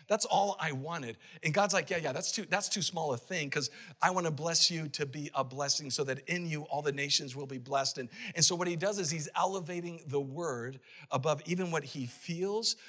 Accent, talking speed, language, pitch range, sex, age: American, 240 wpm, English, 150-195 Hz, male, 50-69